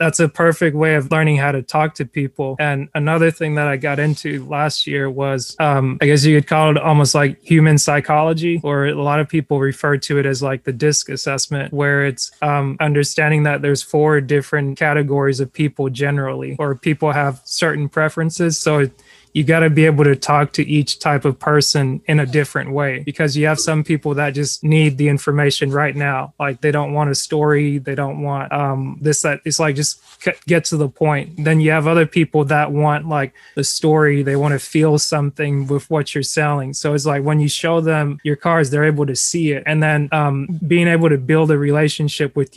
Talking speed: 215 wpm